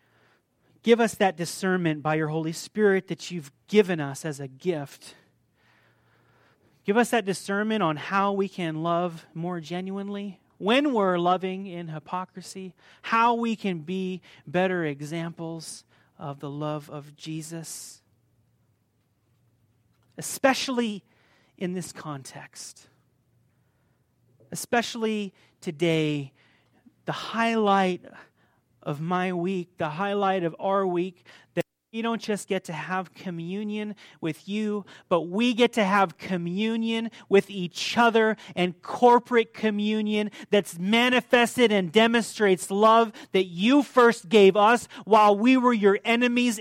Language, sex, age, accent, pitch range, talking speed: English, male, 30-49, American, 155-210 Hz, 120 wpm